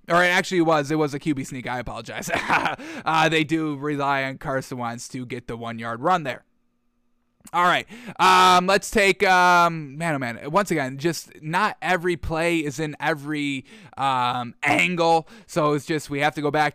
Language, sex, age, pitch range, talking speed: English, male, 20-39, 150-180 Hz, 185 wpm